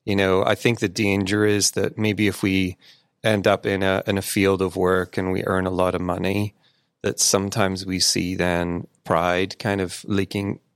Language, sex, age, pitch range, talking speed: English, male, 30-49, 95-115 Hz, 200 wpm